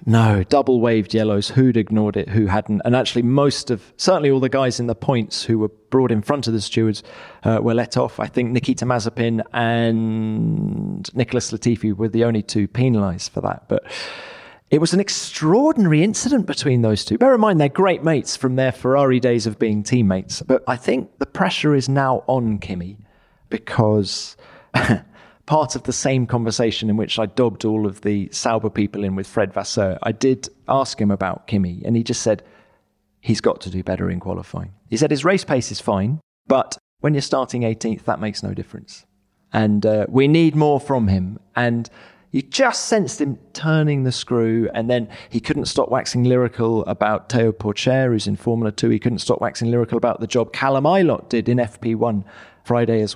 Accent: British